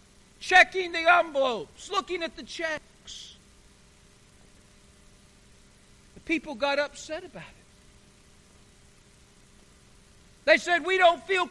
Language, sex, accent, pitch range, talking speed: English, male, American, 180-280 Hz, 95 wpm